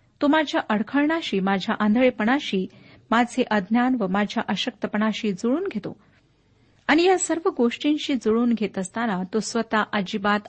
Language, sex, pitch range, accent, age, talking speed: Marathi, female, 205-285 Hz, native, 50-69, 125 wpm